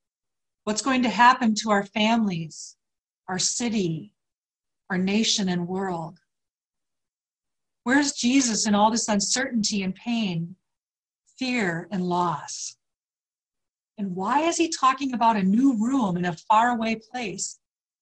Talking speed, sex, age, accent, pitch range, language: 125 wpm, female, 40-59, American, 185-225 Hz, English